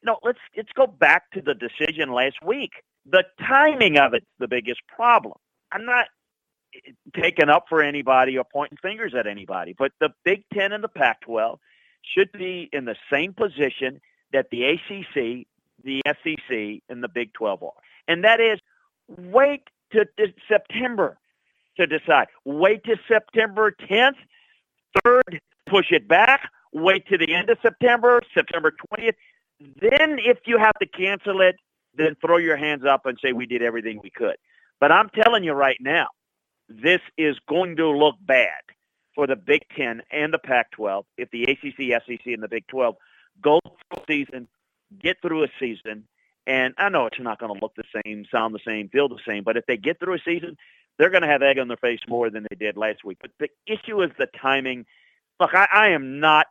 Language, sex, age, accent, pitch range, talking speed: English, male, 50-69, American, 130-215 Hz, 190 wpm